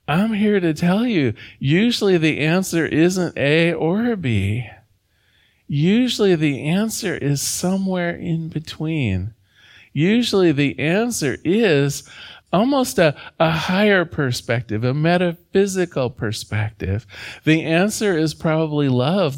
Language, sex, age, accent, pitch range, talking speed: English, male, 50-69, American, 125-180 Hz, 110 wpm